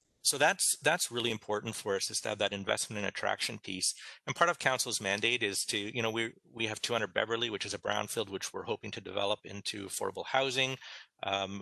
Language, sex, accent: English, male, American